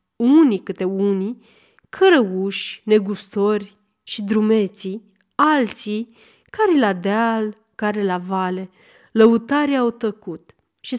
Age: 30-49